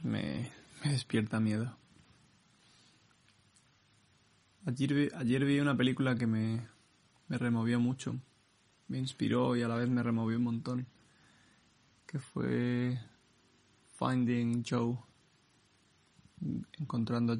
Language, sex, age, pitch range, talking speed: Spanish, male, 20-39, 110-130 Hz, 105 wpm